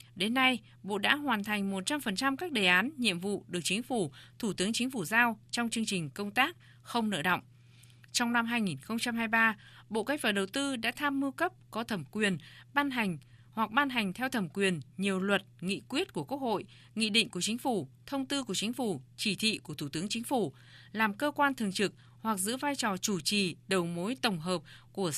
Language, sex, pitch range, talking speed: Vietnamese, female, 185-245 Hz, 220 wpm